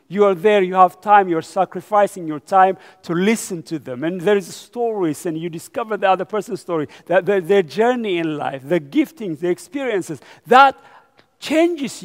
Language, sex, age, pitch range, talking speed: English, male, 50-69, 160-215 Hz, 185 wpm